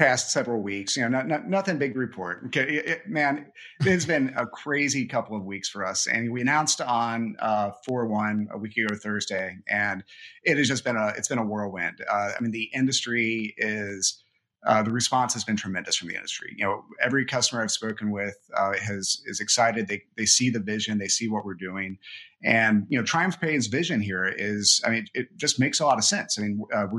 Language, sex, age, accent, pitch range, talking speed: English, male, 30-49, American, 105-130 Hz, 225 wpm